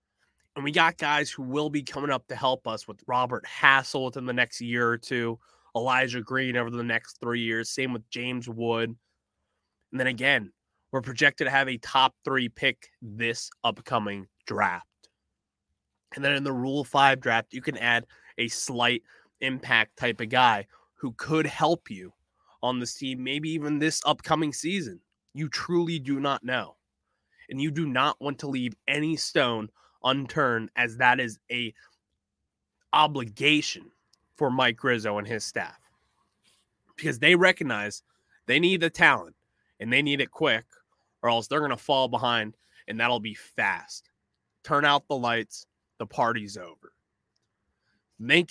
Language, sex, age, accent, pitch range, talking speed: English, male, 20-39, American, 115-150 Hz, 165 wpm